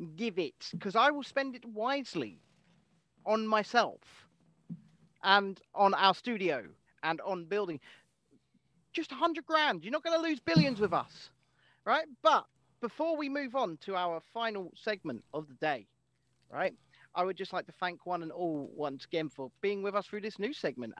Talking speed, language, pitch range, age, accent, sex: 175 wpm, English, 160-225 Hz, 40-59, British, male